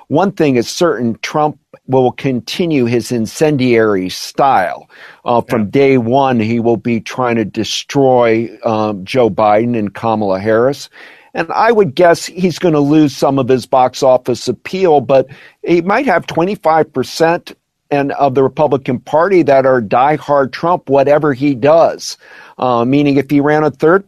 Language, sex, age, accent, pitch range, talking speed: English, male, 50-69, American, 125-160 Hz, 155 wpm